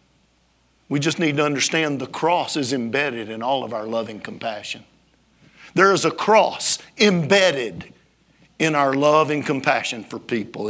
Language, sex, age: English, male, 50-69